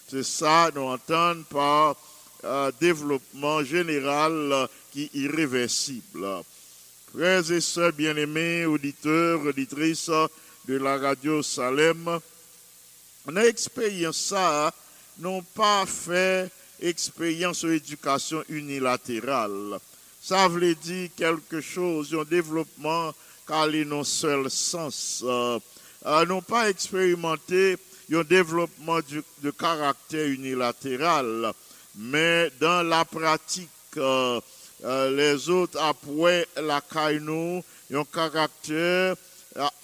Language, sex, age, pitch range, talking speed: English, male, 60-79, 145-175 Hz, 100 wpm